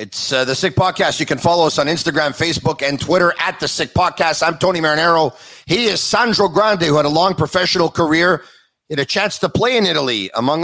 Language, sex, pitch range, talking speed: English, male, 155-205 Hz, 220 wpm